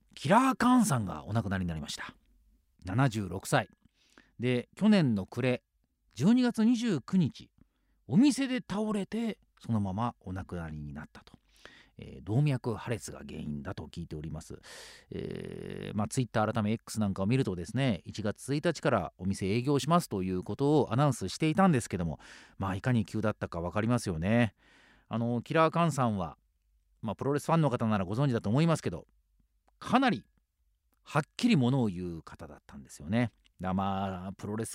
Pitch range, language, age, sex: 95-145 Hz, English, 40-59, male